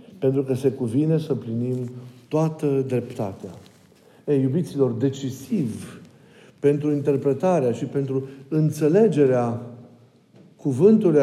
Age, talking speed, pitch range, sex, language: 50-69, 90 wpm, 130-170 Hz, male, Romanian